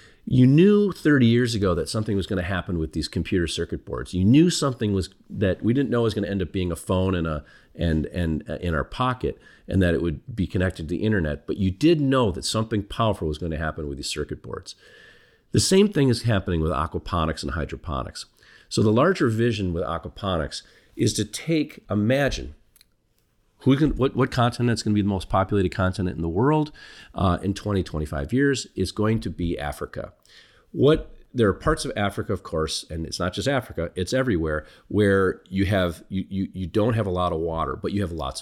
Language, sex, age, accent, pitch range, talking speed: English, male, 50-69, American, 85-115 Hz, 215 wpm